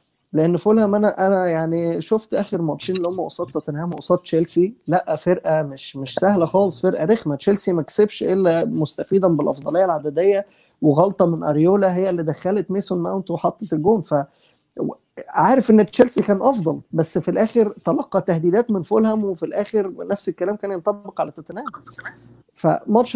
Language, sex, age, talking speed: Arabic, male, 20-39, 155 wpm